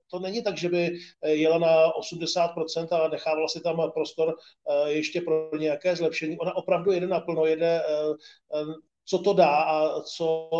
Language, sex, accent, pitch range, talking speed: Czech, male, native, 155-175 Hz, 155 wpm